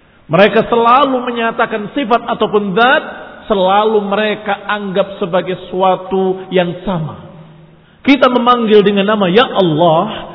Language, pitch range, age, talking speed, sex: Indonesian, 175-240 Hz, 50-69, 110 wpm, male